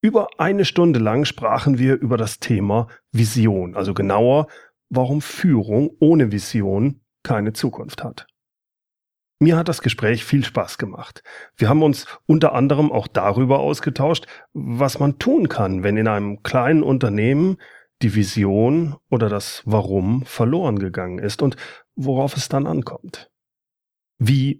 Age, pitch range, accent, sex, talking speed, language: 40-59, 110-145 Hz, German, male, 140 wpm, German